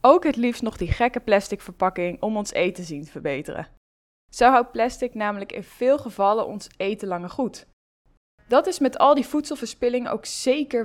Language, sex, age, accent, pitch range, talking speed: Dutch, female, 20-39, Dutch, 200-260 Hz, 185 wpm